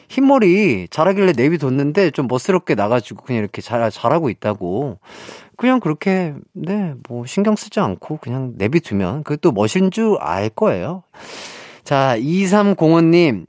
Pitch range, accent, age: 120-185 Hz, native, 30-49